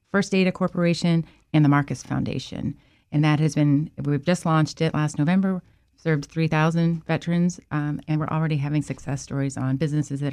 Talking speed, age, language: 170 wpm, 30-49, English